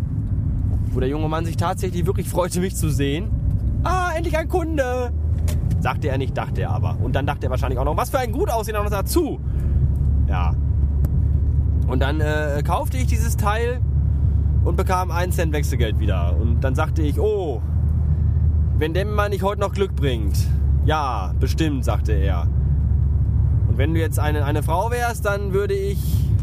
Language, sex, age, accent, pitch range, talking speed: German, male, 20-39, German, 70-100 Hz, 175 wpm